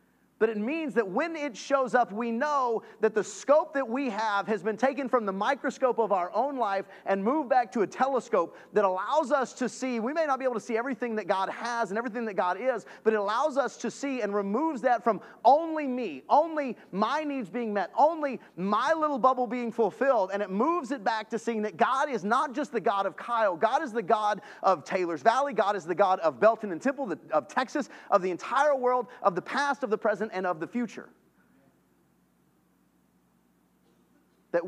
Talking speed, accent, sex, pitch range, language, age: 215 wpm, American, male, 175-250 Hz, English, 30-49